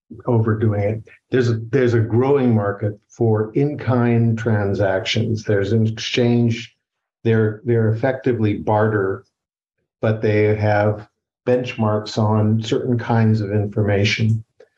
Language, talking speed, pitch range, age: English, 115 wpm, 105-115 Hz, 50-69